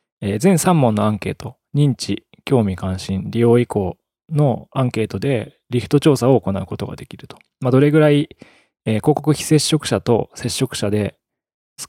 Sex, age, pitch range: male, 20-39, 100-145 Hz